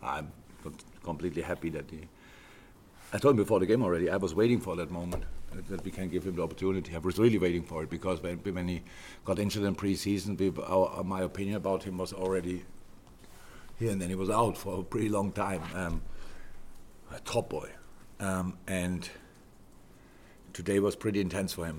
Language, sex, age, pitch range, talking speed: English, male, 50-69, 85-95 Hz, 185 wpm